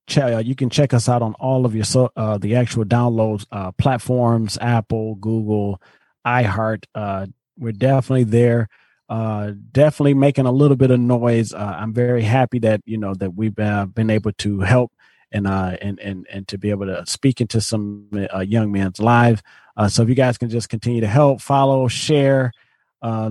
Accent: American